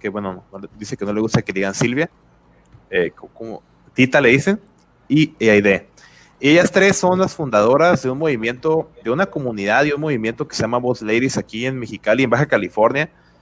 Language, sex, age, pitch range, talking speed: Spanish, male, 30-49, 105-140 Hz, 190 wpm